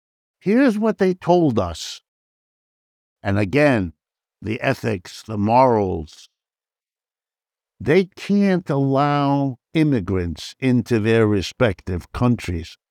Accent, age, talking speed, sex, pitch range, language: American, 60-79, 90 wpm, male, 105-150 Hz, English